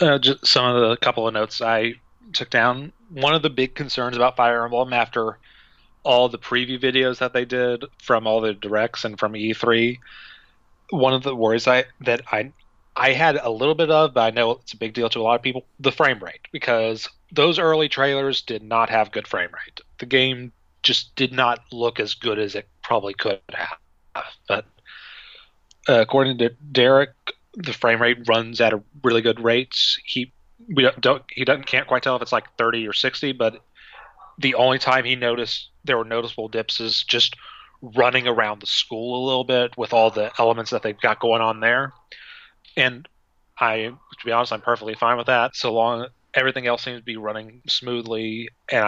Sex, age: male, 30-49